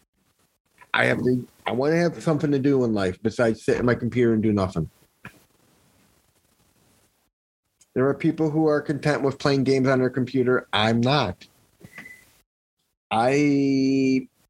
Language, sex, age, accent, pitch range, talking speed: English, male, 30-49, American, 110-135 Hz, 145 wpm